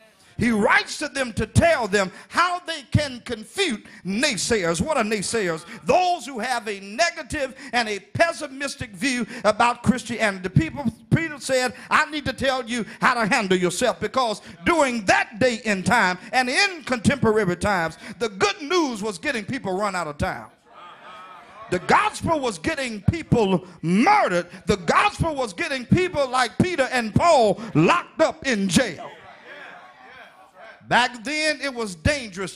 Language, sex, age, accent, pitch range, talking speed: English, male, 50-69, American, 210-280 Hz, 155 wpm